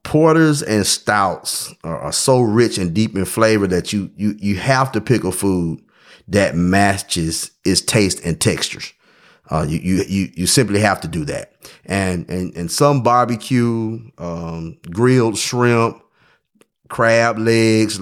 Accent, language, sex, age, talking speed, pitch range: American, English, male, 30-49, 150 wpm, 90-115 Hz